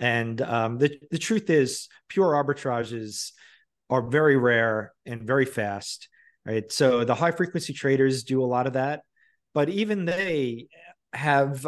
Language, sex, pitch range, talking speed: English, male, 120-145 Hz, 150 wpm